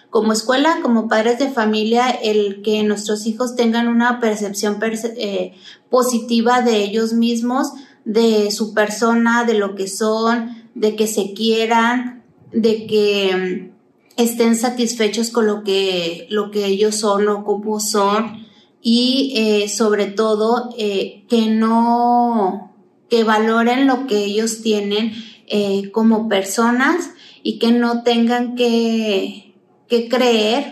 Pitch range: 210-235 Hz